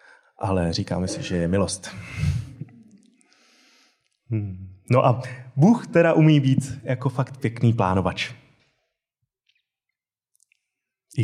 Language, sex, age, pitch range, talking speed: Czech, male, 20-39, 105-145 Hz, 90 wpm